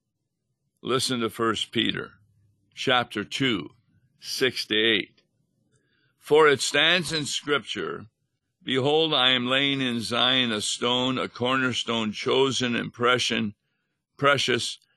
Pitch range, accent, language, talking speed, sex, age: 115-145 Hz, American, English, 110 wpm, male, 60-79